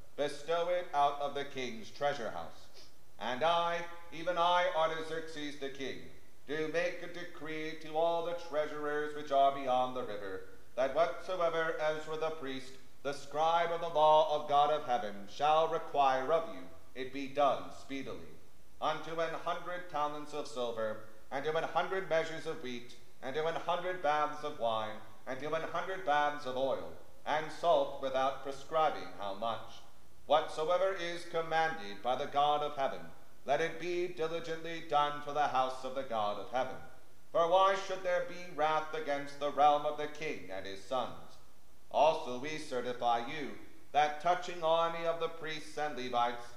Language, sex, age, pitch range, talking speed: English, male, 40-59, 135-165 Hz, 170 wpm